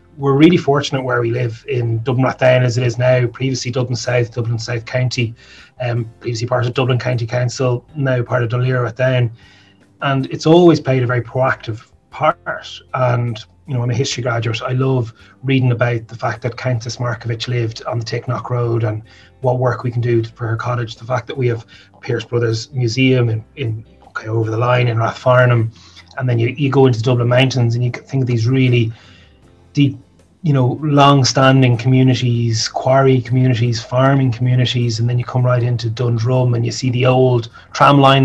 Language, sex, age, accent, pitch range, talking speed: English, male, 30-49, Irish, 115-130 Hz, 195 wpm